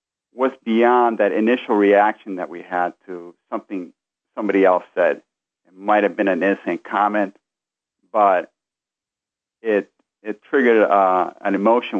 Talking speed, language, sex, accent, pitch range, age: 135 wpm, English, male, American, 95-110 Hz, 50-69